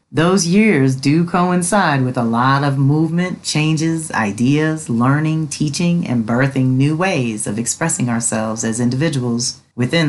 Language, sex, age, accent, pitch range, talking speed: English, female, 40-59, American, 125-155 Hz, 135 wpm